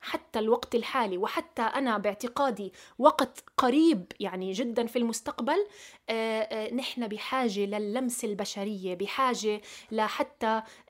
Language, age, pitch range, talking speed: Arabic, 20-39, 215-270 Hz, 100 wpm